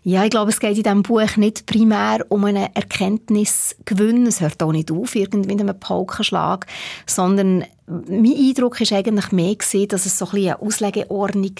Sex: female